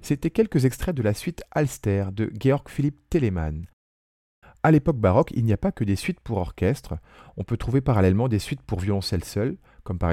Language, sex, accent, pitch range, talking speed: French, male, French, 95-125 Hz, 200 wpm